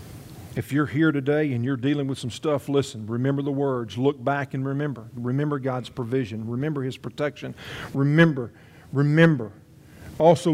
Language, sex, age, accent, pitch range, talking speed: English, male, 50-69, American, 120-160 Hz, 155 wpm